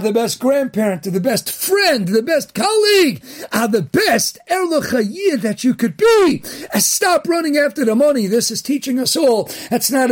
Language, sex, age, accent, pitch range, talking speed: English, male, 50-69, American, 190-250 Hz, 190 wpm